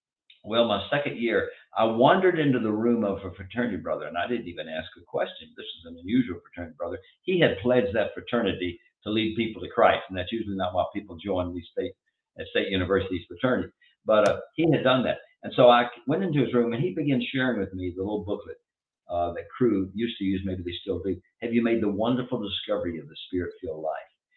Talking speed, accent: 225 wpm, American